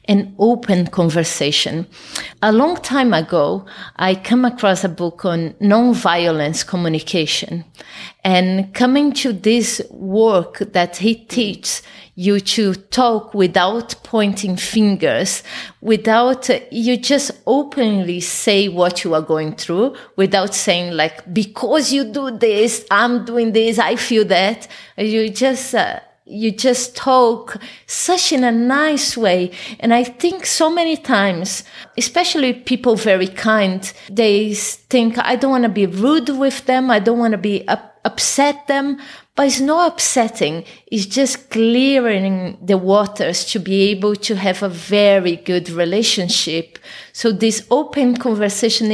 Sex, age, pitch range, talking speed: female, 30-49, 190-245 Hz, 135 wpm